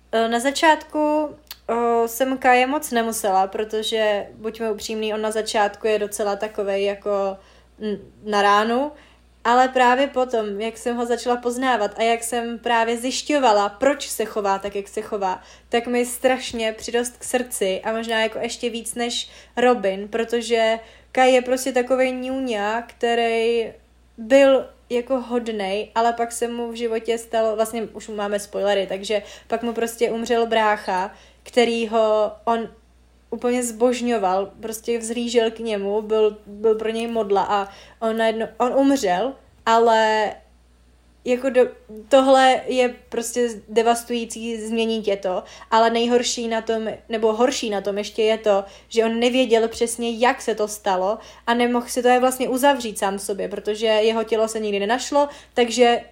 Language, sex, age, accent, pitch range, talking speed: Czech, female, 20-39, native, 215-245 Hz, 150 wpm